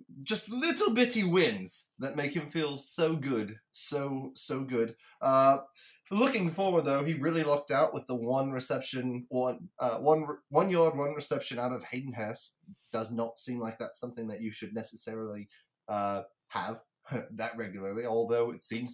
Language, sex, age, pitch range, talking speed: English, male, 20-39, 110-135 Hz, 170 wpm